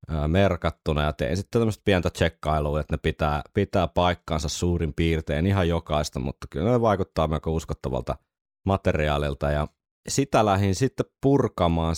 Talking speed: 140 wpm